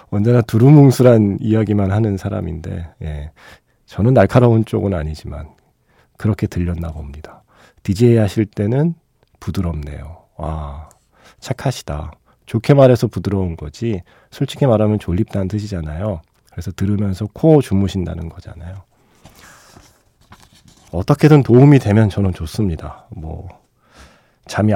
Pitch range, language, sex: 90-125 Hz, Korean, male